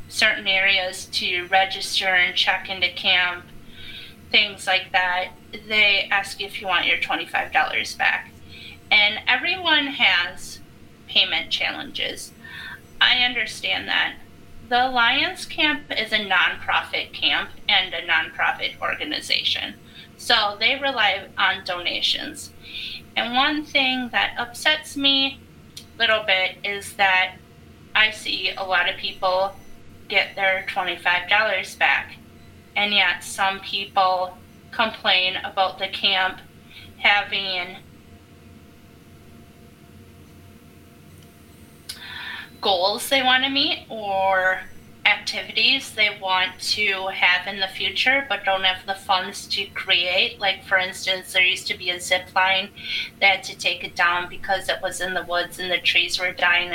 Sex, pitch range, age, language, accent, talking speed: female, 180-210 Hz, 30-49, English, American, 130 wpm